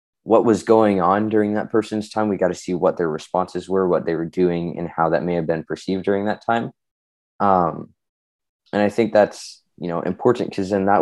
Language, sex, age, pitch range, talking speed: English, male, 20-39, 90-105 Hz, 225 wpm